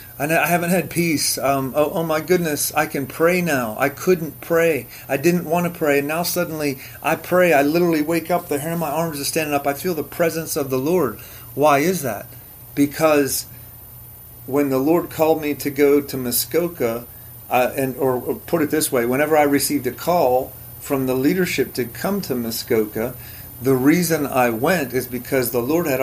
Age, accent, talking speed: 40-59, American, 200 wpm